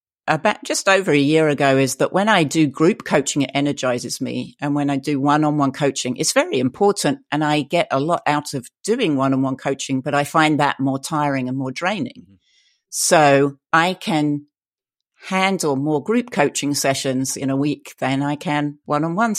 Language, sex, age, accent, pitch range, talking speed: English, female, 50-69, British, 135-160 Hz, 185 wpm